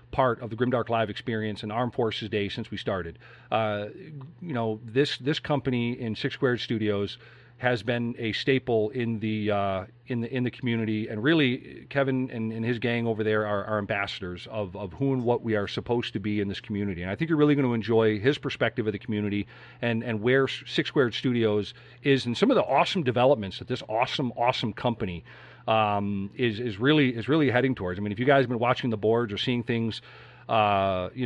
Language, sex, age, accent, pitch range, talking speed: English, male, 40-59, American, 110-130 Hz, 220 wpm